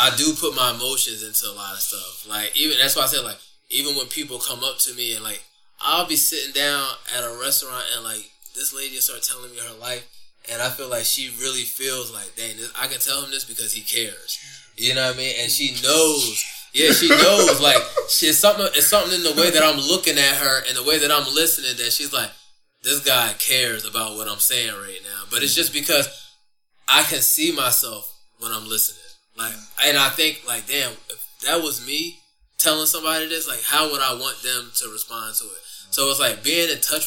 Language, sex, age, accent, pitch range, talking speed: English, male, 20-39, American, 120-155 Hz, 230 wpm